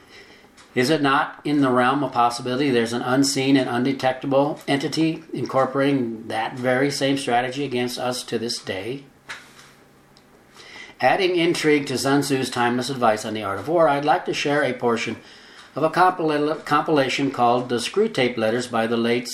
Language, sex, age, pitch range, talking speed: English, male, 60-79, 120-145 Hz, 160 wpm